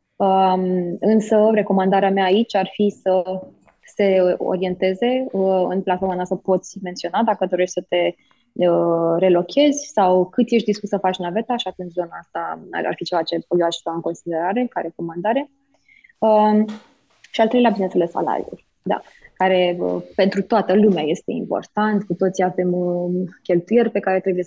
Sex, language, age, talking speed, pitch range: female, Romanian, 20-39, 160 wpm, 180-215 Hz